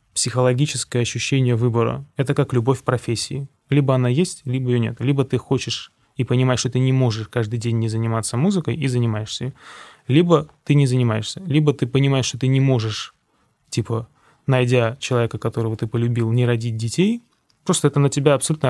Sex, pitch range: male, 120-140 Hz